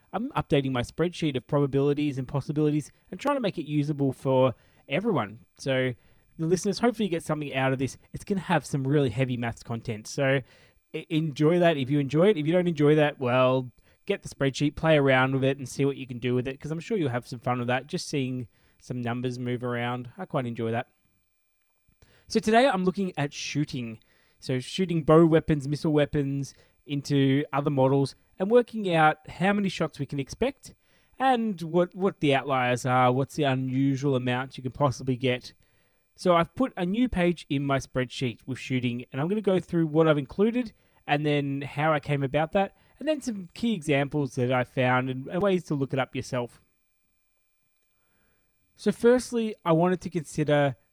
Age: 20-39